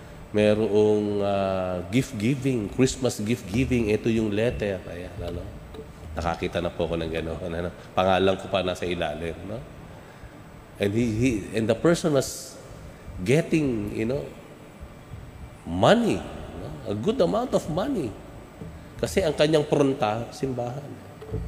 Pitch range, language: 90-115 Hz, Filipino